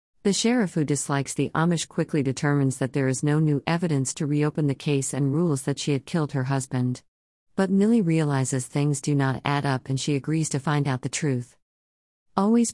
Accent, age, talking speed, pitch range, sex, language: American, 50-69, 205 wpm, 130-155 Hz, female, English